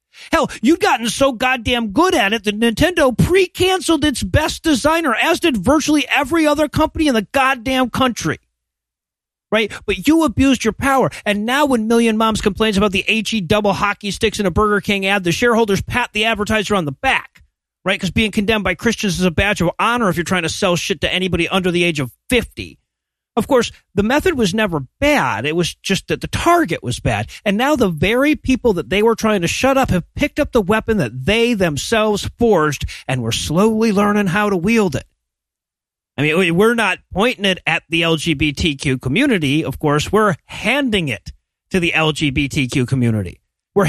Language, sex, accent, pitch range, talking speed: English, male, American, 165-235 Hz, 195 wpm